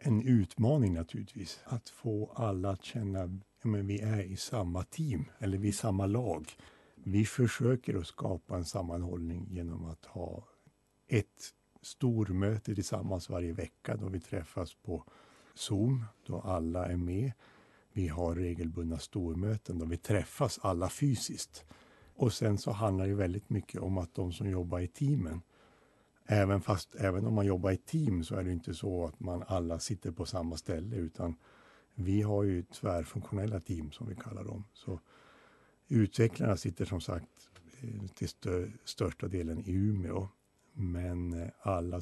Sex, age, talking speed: male, 60-79, 155 wpm